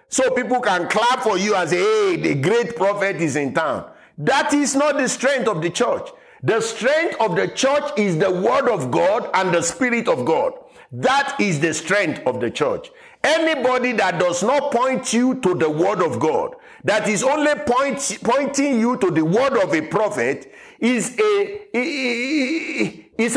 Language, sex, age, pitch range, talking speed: English, male, 50-69, 190-290 Hz, 180 wpm